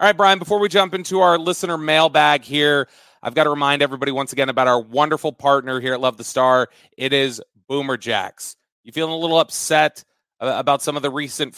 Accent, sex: American, male